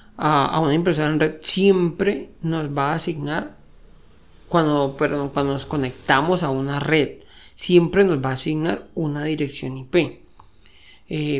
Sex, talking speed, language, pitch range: male, 140 wpm, Spanish, 145-180 Hz